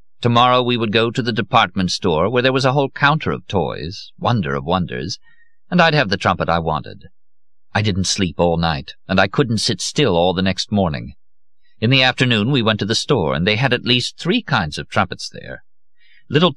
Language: English